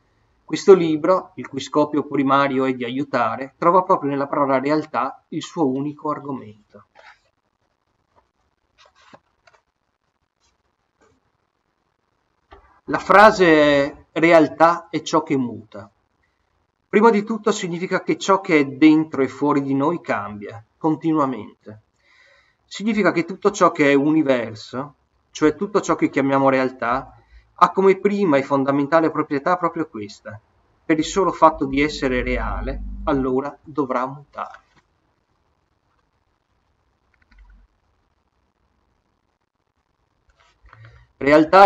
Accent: native